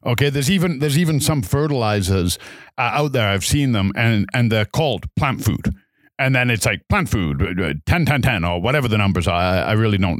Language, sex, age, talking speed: English, male, 50-69, 220 wpm